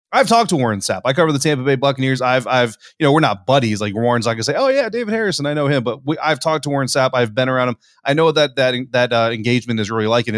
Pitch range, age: 115-140 Hz, 20-39